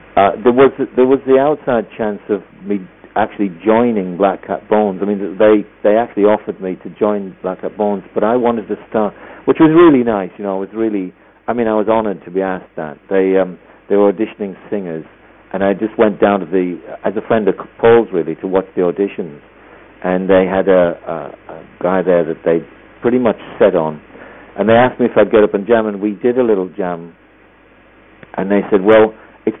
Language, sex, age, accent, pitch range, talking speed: English, male, 50-69, British, 90-110 Hz, 220 wpm